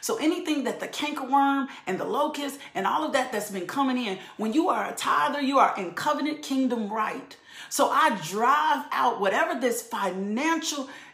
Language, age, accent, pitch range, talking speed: English, 40-59, American, 220-280 Hz, 190 wpm